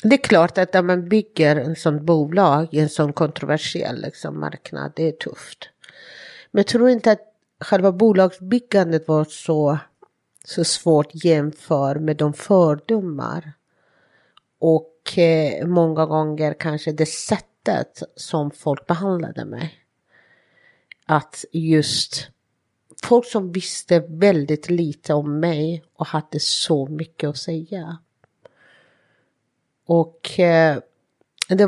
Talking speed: 115 wpm